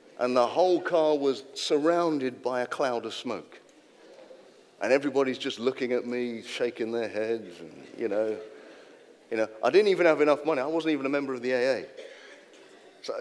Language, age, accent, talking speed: English, 40-59, British, 175 wpm